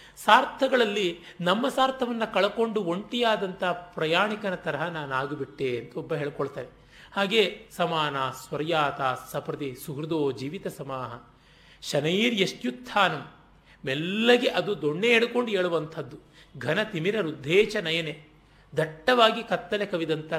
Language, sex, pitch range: Kannada, male, 150-205 Hz